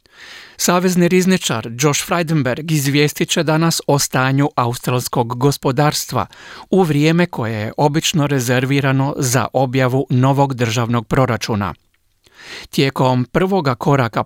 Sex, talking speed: male, 105 wpm